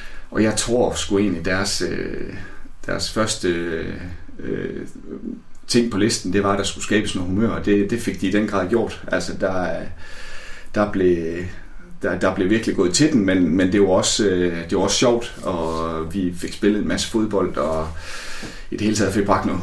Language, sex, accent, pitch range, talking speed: Danish, male, native, 95-110 Hz, 185 wpm